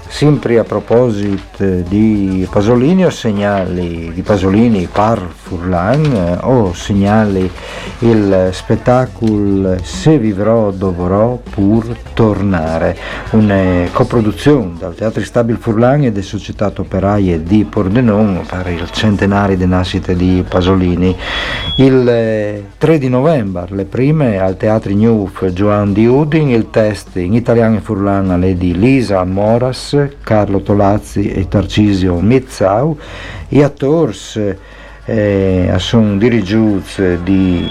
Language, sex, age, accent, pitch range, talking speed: Italian, male, 50-69, native, 95-115 Hz, 115 wpm